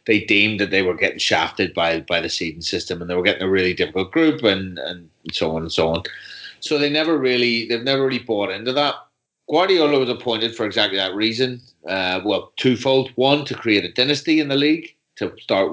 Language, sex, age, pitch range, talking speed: English, male, 30-49, 95-115 Hz, 220 wpm